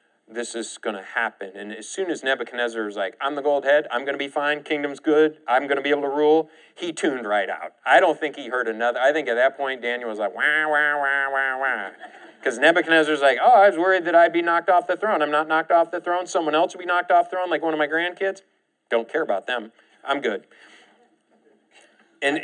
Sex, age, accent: male, 40-59, American